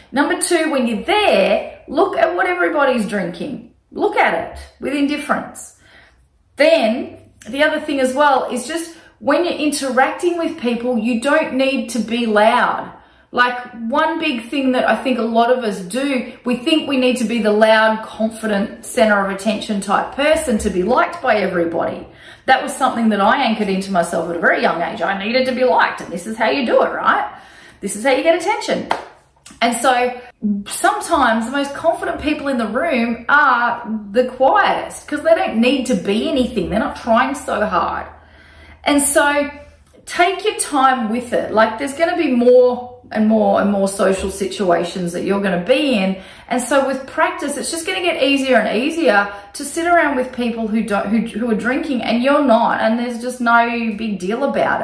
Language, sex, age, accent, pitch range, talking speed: English, female, 30-49, Australian, 220-290 Hz, 195 wpm